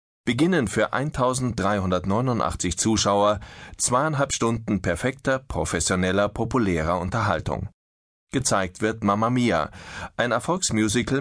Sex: male